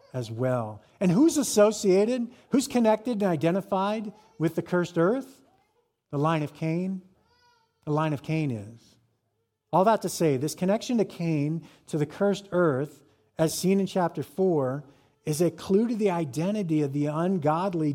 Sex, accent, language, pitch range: male, American, English, 140-185 Hz